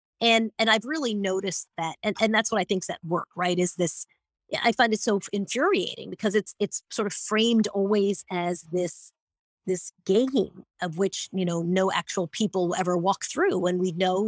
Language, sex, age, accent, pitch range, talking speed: English, female, 30-49, American, 180-220 Hz, 200 wpm